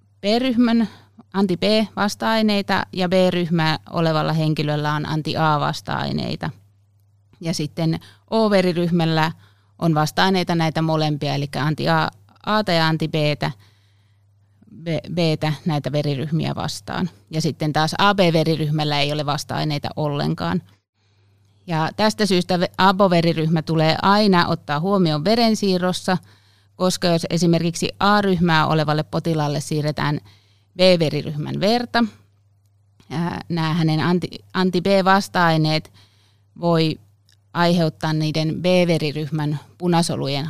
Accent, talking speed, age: native, 85 wpm, 30-49